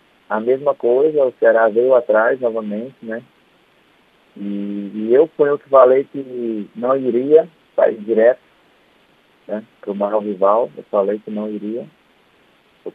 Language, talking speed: Portuguese, 155 wpm